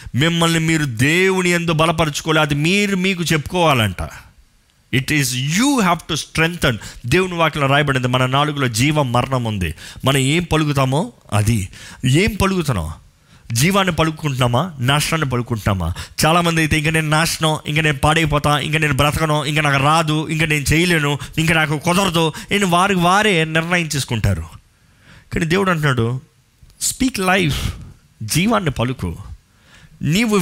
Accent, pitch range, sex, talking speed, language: native, 125-175 Hz, male, 120 wpm, Telugu